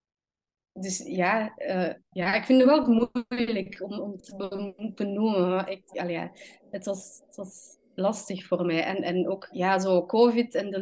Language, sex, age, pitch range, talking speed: Dutch, female, 20-39, 190-245 Hz, 160 wpm